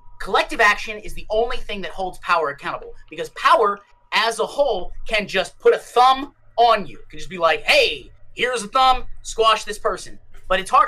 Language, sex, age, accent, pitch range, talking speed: English, male, 30-49, American, 165-235 Hz, 205 wpm